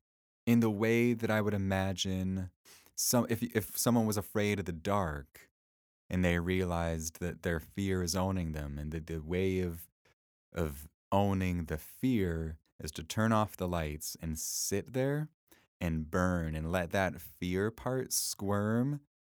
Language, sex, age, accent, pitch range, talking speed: English, male, 20-39, American, 75-100 Hz, 160 wpm